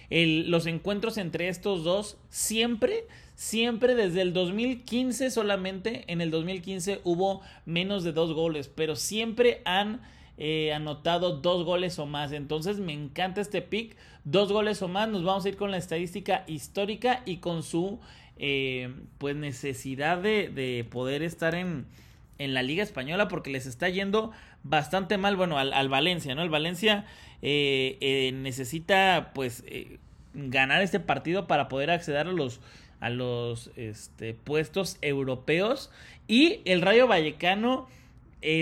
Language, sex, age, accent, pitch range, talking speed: Spanish, male, 30-49, Mexican, 150-205 Hz, 145 wpm